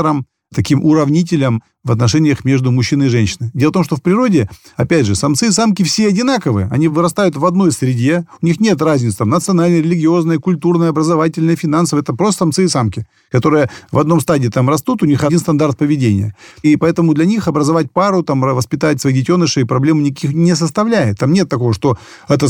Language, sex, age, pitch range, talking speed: Russian, male, 40-59, 125-170 Hz, 190 wpm